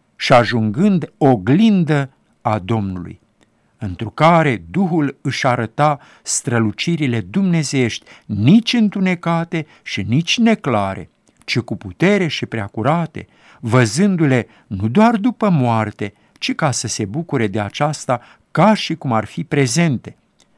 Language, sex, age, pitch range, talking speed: Romanian, male, 50-69, 115-180 Hz, 115 wpm